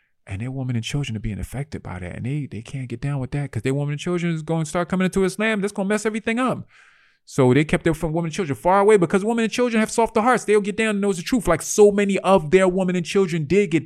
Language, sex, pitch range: English, male, 110-170 Hz